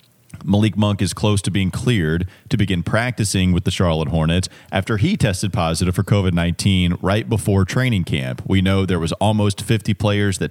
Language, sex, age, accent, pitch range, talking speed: English, male, 30-49, American, 90-105 Hz, 185 wpm